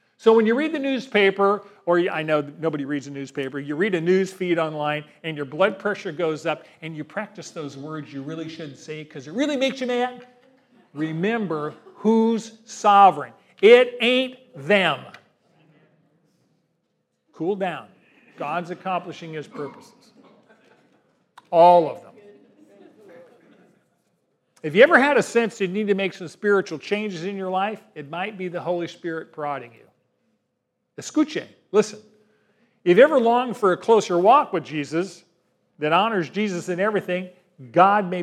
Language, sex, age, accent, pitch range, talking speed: English, male, 40-59, American, 150-205 Hz, 155 wpm